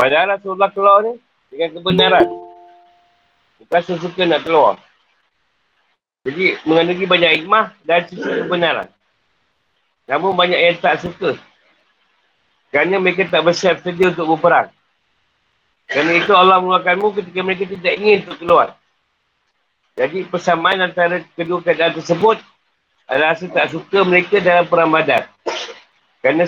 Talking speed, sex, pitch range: 125 wpm, male, 170-200 Hz